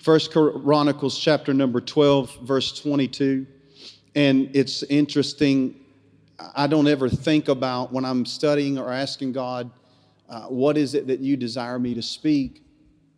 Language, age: English, 40-59